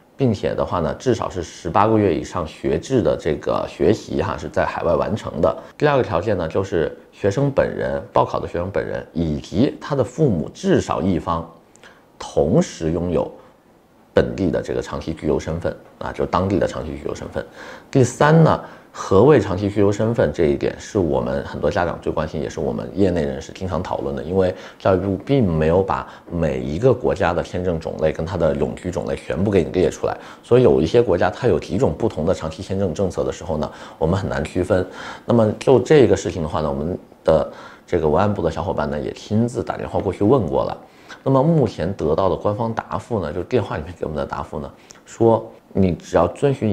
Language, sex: Chinese, male